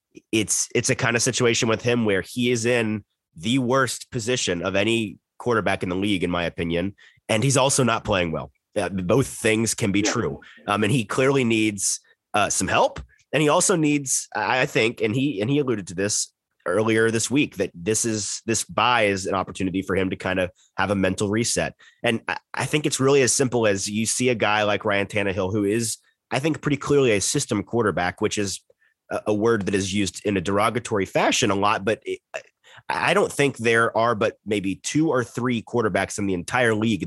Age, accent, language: 30-49, American, English